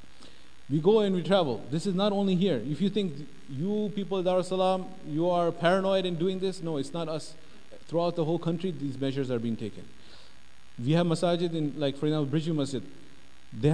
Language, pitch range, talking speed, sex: English, 130-180 Hz, 200 wpm, male